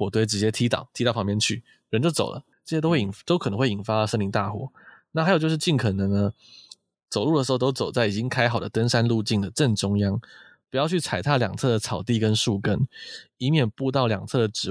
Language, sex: Chinese, male